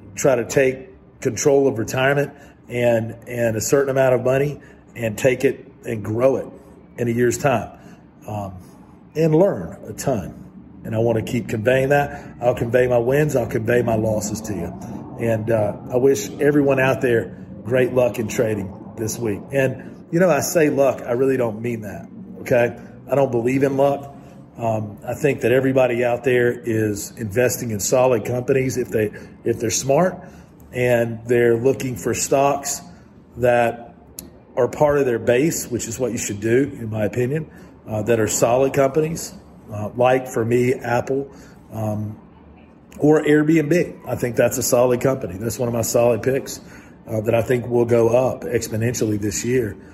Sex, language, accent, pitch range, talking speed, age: male, English, American, 110-135 Hz, 180 wpm, 40-59